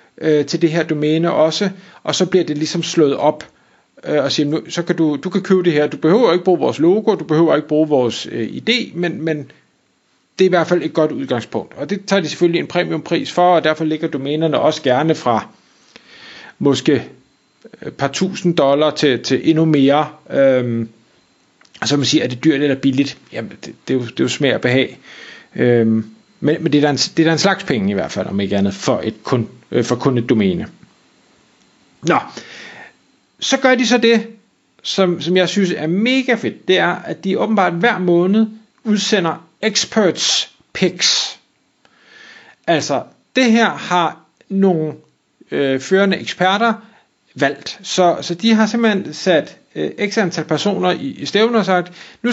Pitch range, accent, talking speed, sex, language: 150-205 Hz, native, 180 wpm, male, Danish